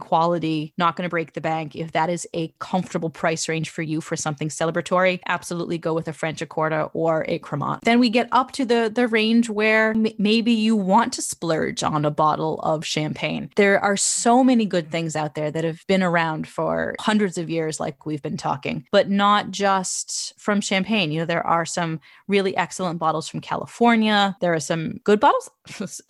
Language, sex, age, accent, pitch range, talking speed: English, female, 20-39, American, 160-195 Hz, 200 wpm